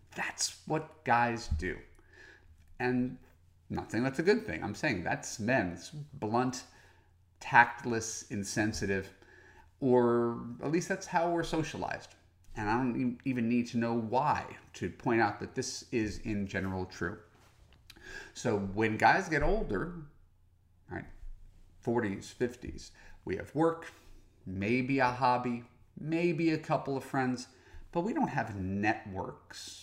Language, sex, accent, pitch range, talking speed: English, male, American, 95-130 Hz, 130 wpm